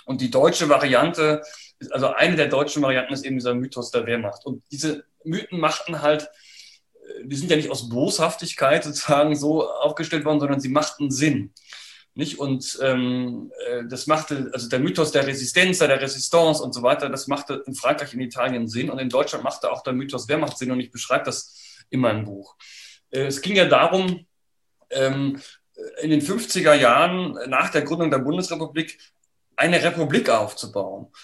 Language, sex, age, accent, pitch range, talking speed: German, male, 30-49, German, 130-160 Hz, 165 wpm